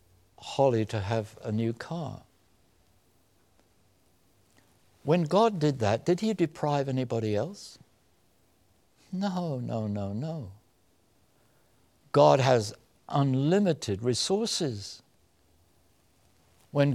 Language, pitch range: English, 115-180 Hz